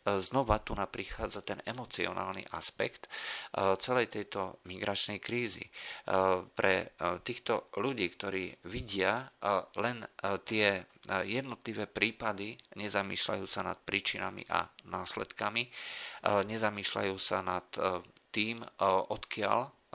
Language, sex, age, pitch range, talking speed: Slovak, male, 50-69, 95-115 Hz, 95 wpm